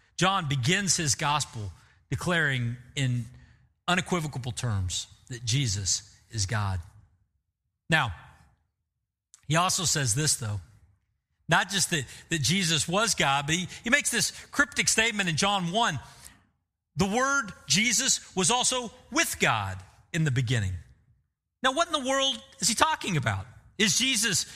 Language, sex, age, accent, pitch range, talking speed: English, male, 40-59, American, 115-195 Hz, 135 wpm